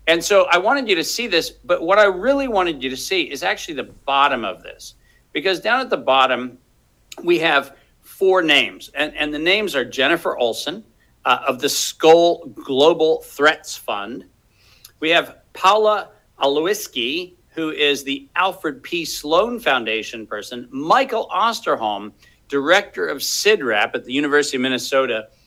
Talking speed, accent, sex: 160 wpm, American, male